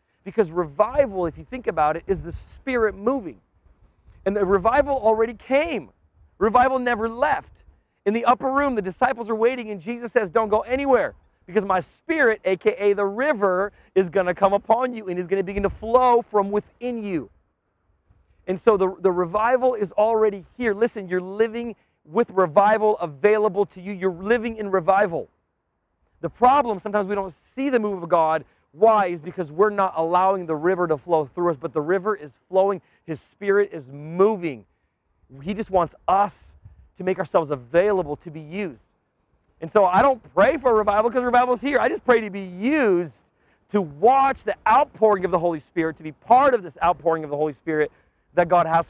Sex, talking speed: male, 190 wpm